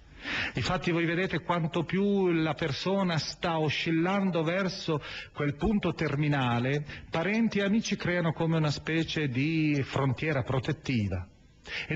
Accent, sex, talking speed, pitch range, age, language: native, male, 120 wpm, 115-165 Hz, 40-59, Italian